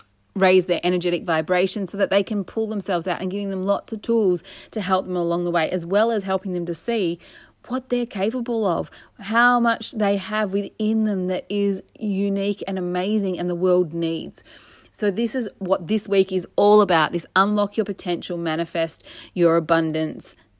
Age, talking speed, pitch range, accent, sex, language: 30-49, 190 wpm, 170-200 Hz, Australian, female, English